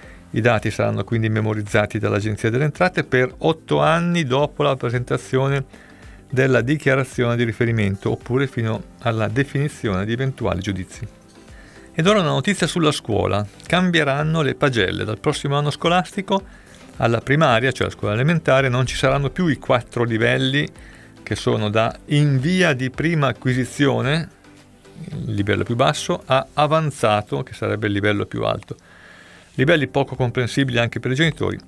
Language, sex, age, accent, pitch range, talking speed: Italian, male, 50-69, native, 110-145 Hz, 150 wpm